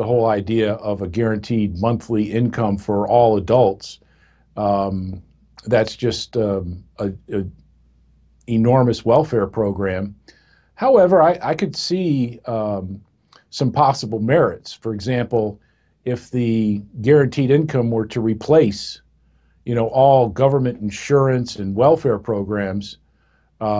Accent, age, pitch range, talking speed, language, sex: American, 50-69, 105-125 Hz, 115 wpm, English, male